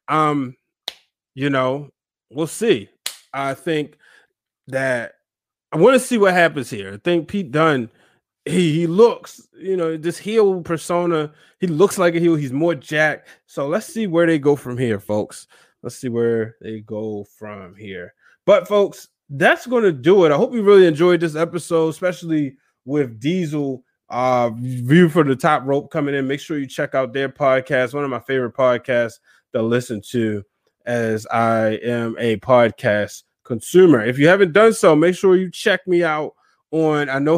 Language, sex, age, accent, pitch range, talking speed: English, male, 20-39, American, 120-170 Hz, 180 wpm